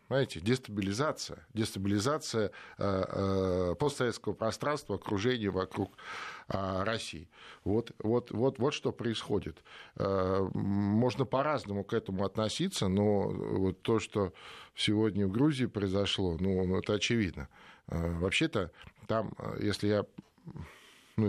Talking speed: 100 wpm